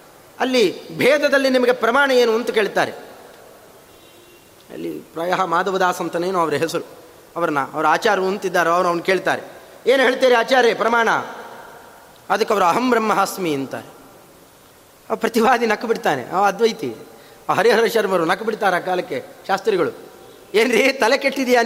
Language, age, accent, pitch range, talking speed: Kannada, 30-49, native, 210-265 Hz, 120 wpm